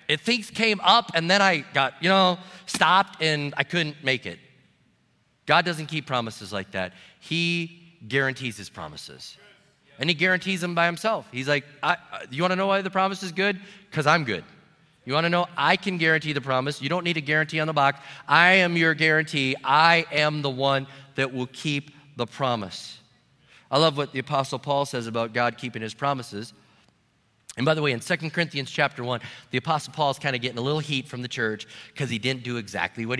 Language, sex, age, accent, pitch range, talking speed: English, male, 40-59, American, 135-180 Hz, 210 wpm